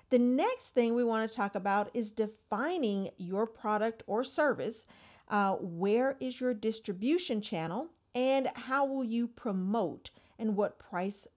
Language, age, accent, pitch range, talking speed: English, 50-69, American, 195-245 Hz, 145 wpm